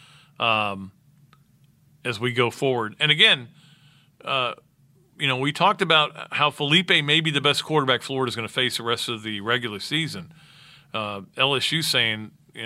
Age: 50-69